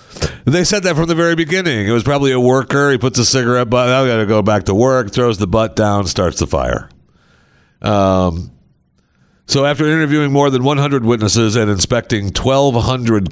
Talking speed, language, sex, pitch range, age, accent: 190 wpm, English, male, 85-125 Hz, 50-69, American